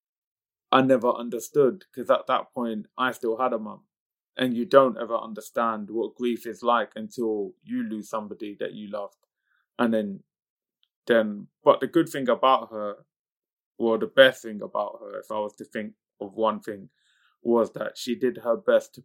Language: English